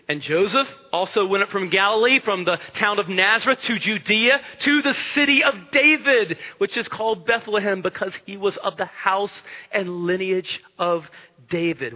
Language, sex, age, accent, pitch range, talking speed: English, male, 40-59, American, 165-255 Hz, 165 wpm